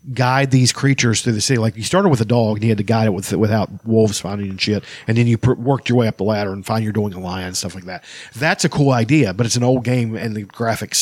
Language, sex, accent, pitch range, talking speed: English, male, American, 110-140 Hz, 300 wpm